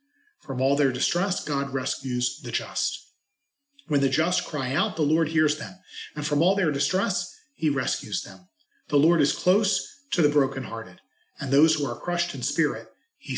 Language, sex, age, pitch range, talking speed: English, male, 40-59, 135-205 Hz, 180 wpm